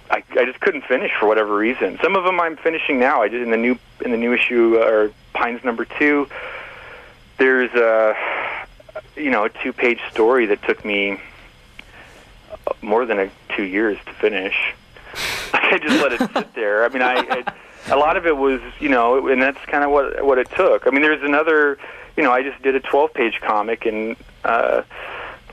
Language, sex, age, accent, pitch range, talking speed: English, male, 40-59, American, 105-145 Hz, 200 wpm